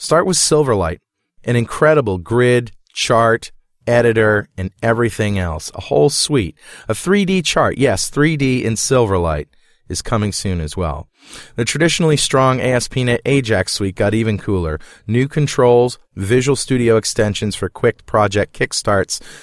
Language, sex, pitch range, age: English, male, 100-135 Hz, 40-59